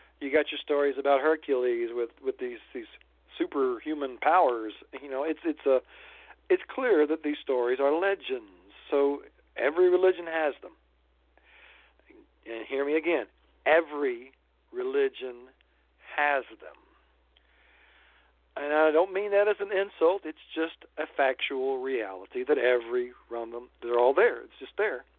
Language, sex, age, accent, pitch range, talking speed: English, male, 50-69, American, 125-190 Hz, 140 wpm